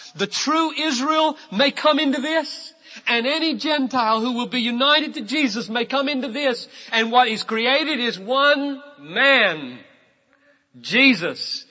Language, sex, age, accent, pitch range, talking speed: English, male, 40-59, American, 170-275 Hz, 145 wpm